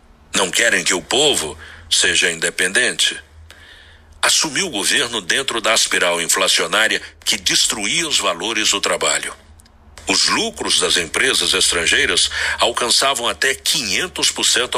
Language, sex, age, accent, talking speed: Portuguese, male, 60-79, Brazilian, 115 wpm